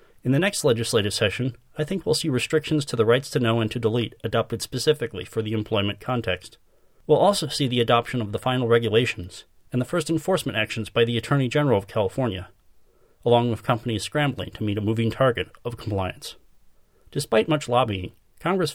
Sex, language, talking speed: male, English, 175 wpm